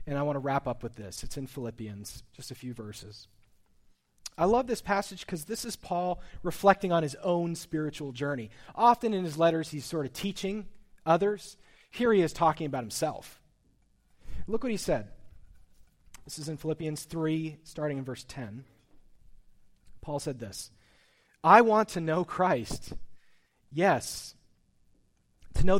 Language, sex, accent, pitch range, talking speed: English, male, American, 125-180 Hz, 155 wpm